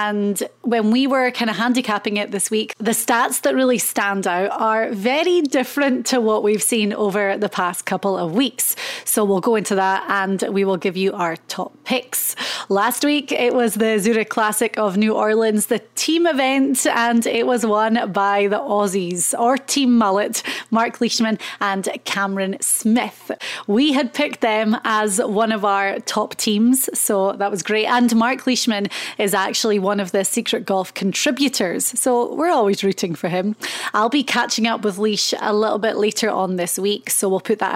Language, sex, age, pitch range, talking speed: English, female, 20-39, 200-240 Hz, 190 wpm